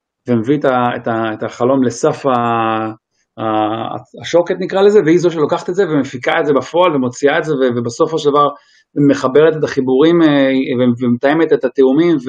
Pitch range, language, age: 125-155 Hz, Hebrew, 30-49